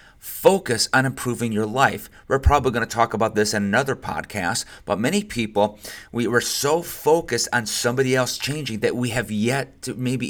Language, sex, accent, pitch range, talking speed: English, male, American, 110-130 Hz, 185 wpm